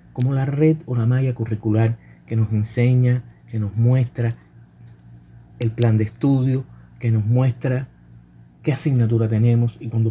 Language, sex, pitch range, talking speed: Spanish, male, 110-125 Hz, 150 wpm